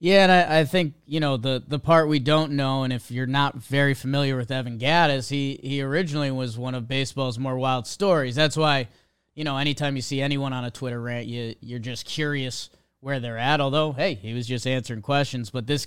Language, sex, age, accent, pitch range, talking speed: English, male, 30-49, American, 125-145 Hz, 225 wpm